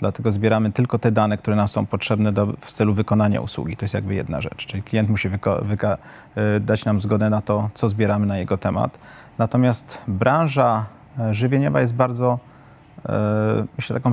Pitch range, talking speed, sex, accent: 110-125 Hz, 185 wpm, male, native